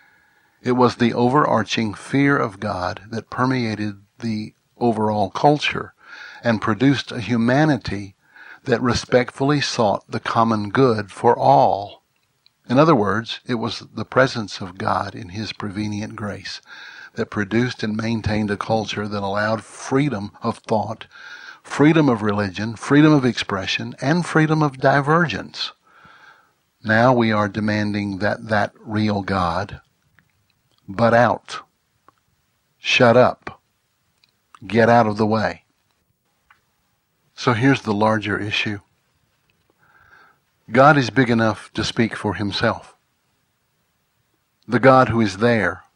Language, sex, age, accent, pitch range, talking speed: English, male, 60-79, American, 105-120 Hz, 120 wpm